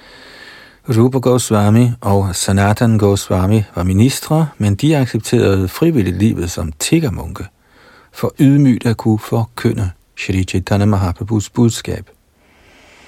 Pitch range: 95-115 Hz